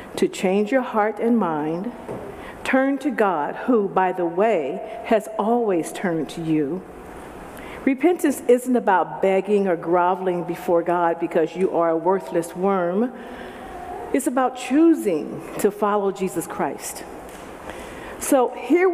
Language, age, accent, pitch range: English, 50-69, American, 185-260 Hz